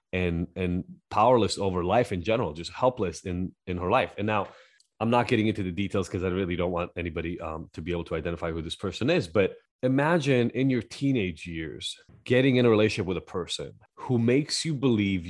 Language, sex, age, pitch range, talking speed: English, male, 30-49, 95-125 Hz, 210 wpm